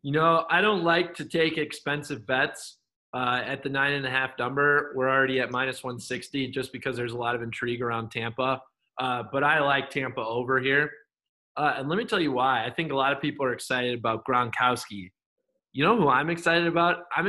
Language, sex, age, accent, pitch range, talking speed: English, male, 20-39, American, 130-160 Hz, 215 wpm